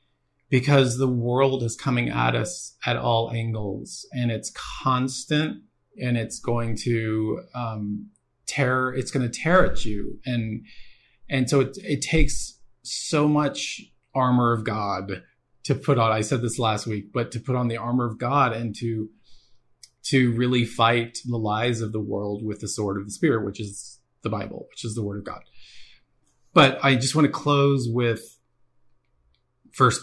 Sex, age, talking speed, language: male, 30-49, 170 wpm, English